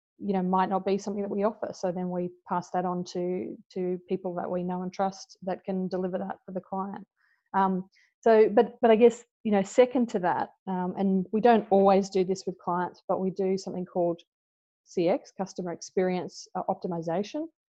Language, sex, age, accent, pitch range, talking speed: English, female, 30-49, Australian, 180-200 Hz, 200 wpm